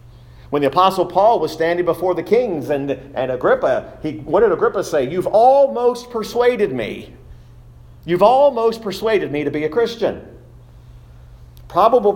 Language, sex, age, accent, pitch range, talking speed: English, male, 40-59, American, 120-175 Hz, 150 wpm